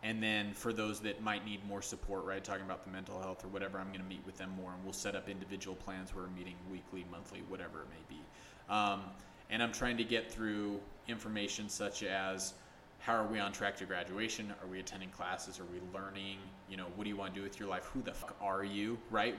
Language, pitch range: English, 95-110 Hz